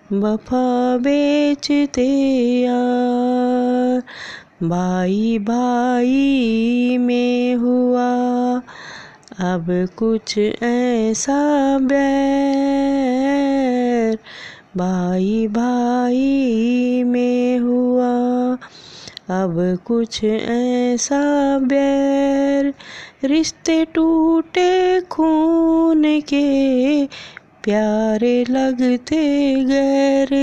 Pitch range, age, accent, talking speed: 240-275 Hz, 20-39, native, 50 wpm